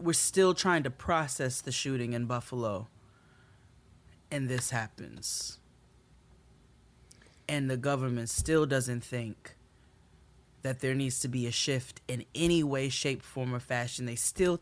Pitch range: 120-160 Hz